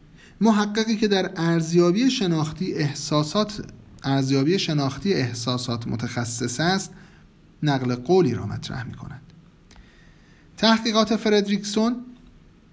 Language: Persian